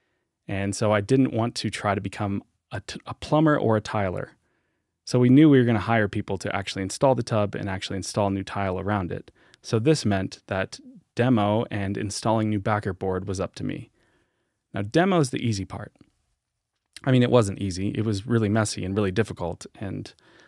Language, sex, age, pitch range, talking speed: English, male, 20-39, 100-125 Hz, 200 wpm